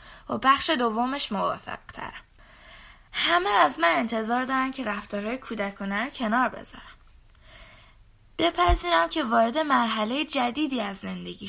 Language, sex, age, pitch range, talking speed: Persian, female, 10-29, 200-290 Hz, 110 wpm